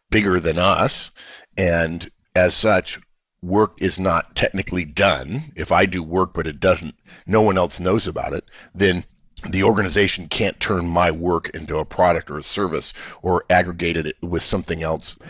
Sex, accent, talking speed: male, American, 170 wpm